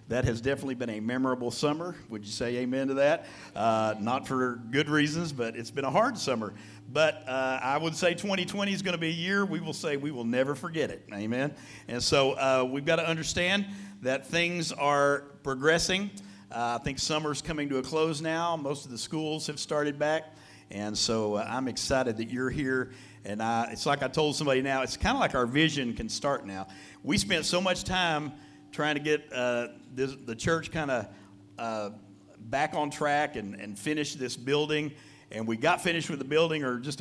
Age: 50-69